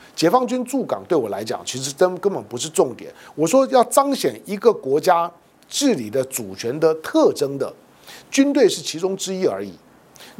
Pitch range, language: 145-220 Hz, Chinese